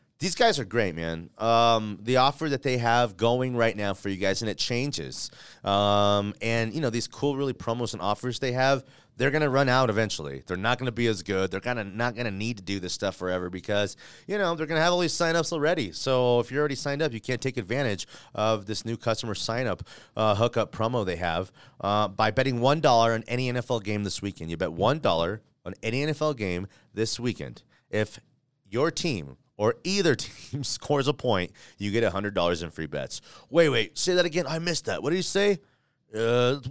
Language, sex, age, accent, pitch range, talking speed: English, male, 30-49, American, 105-135 Hz, 220 wpm